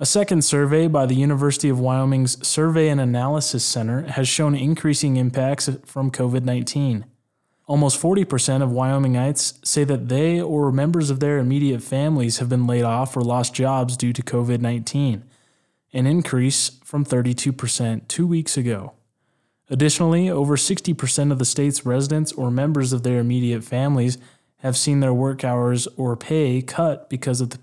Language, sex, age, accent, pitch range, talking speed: English, male, 20-39, American, 125-145 Hz, 155 wpm